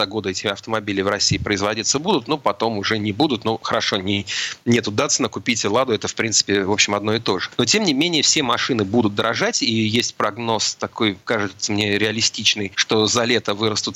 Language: Russian